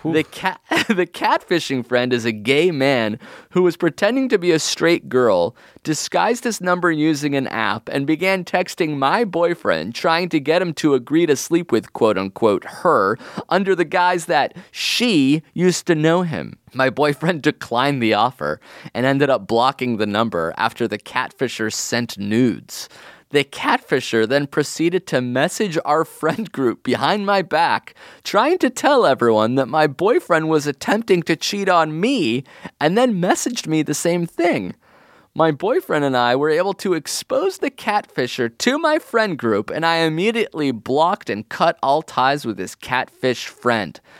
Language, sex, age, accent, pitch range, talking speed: English, male, 30-49, American, 135-190 Hz, 165 wpm